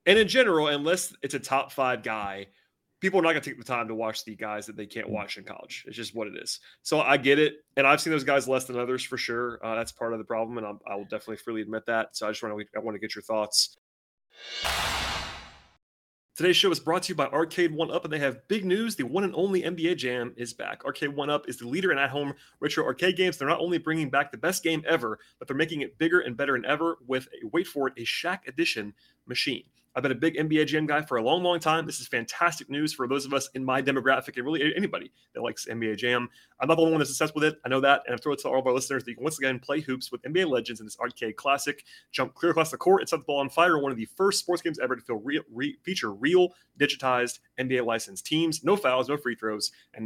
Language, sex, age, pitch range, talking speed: English, male, 30-49, 120-165 Hz, 270 wpm